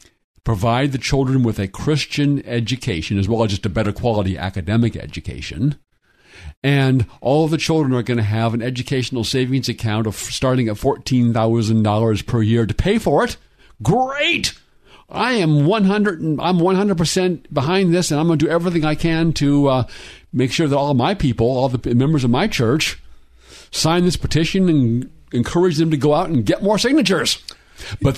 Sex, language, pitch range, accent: male, English, 105-145 Hz, American